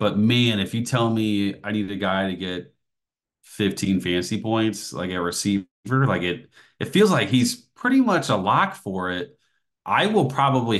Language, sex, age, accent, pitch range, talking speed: English, male, 30-49, American, 95-120 Hz, 185 wpm